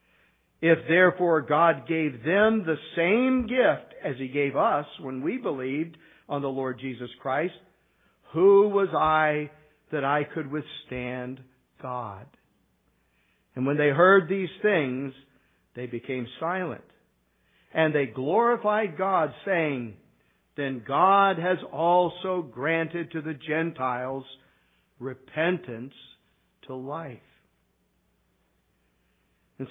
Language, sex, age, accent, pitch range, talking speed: English, male, 50-69, American, 140-185 Hz, 110 wpm